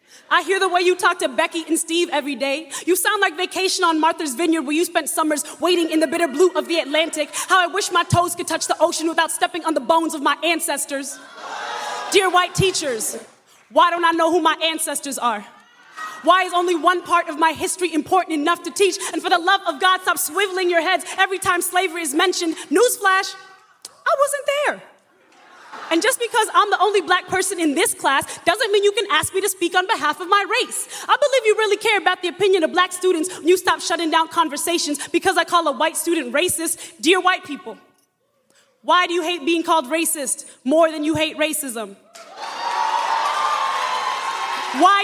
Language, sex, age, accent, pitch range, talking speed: English, female, 20-39, American, 315-365 Hz, 205 wpm